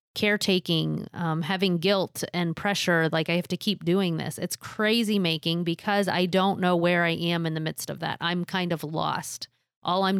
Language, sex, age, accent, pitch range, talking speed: English, female, 30-49, American, 160-185 Hz, 200 wpm